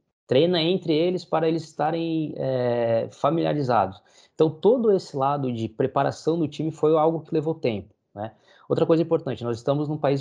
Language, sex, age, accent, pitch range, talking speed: Portuguese, male, 20-39, Brazilian, 125-180 Hz, 165 wpm